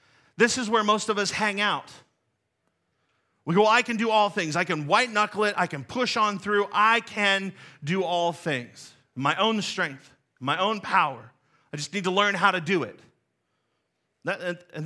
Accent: American